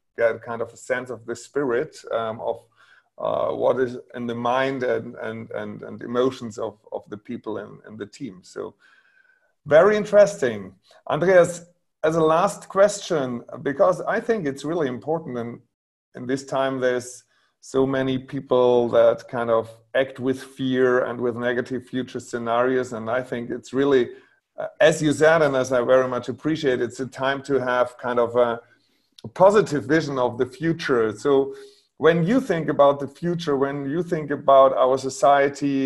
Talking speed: 170 wpm